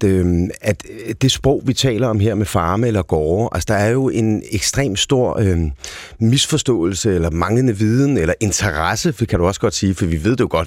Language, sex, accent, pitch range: Danish, male, native, 90-120 Hz